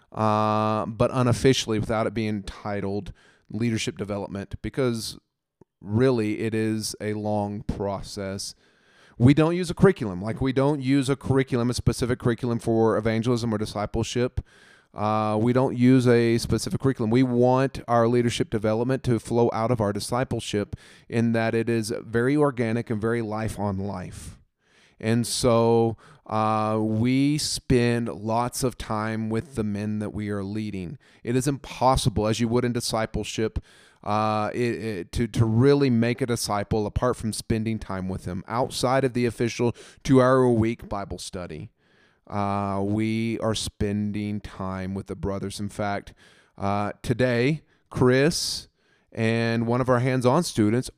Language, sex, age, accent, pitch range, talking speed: English, male, 30-49, American, 105-125 Hz, 145 wpm